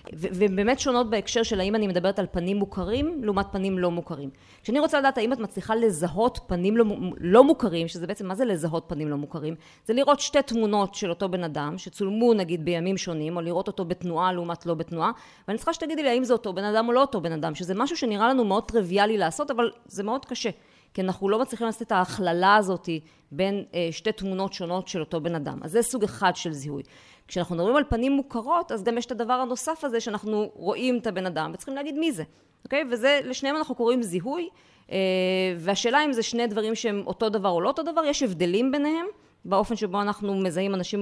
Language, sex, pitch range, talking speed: Hebrew, female, 185-250 Hz, 220 wpm